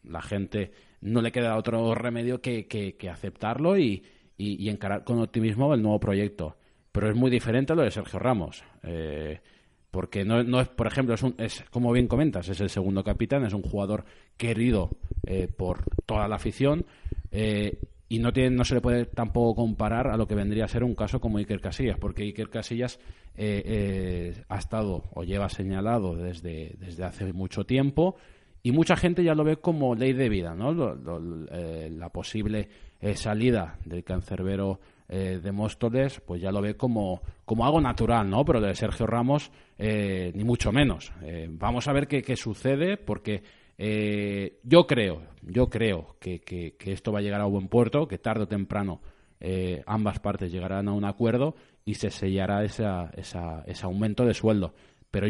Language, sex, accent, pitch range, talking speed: Spanish, male, Spanish, 95-120 Hz, 190 wpm